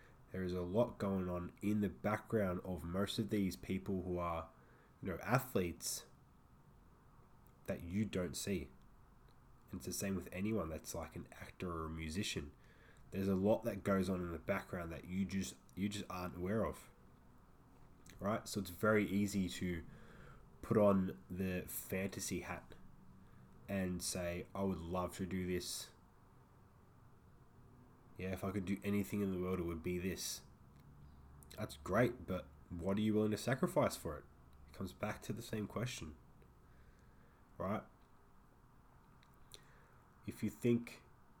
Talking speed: 155 wpm